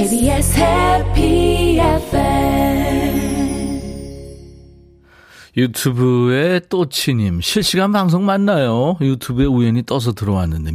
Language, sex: Korean, male